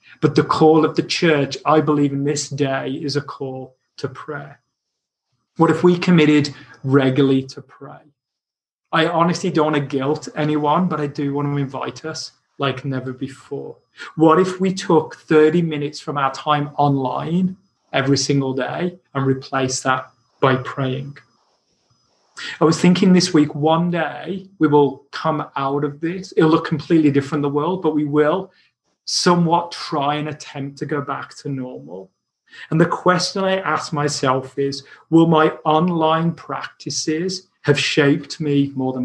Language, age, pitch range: English, 30-49, 135-160 Hz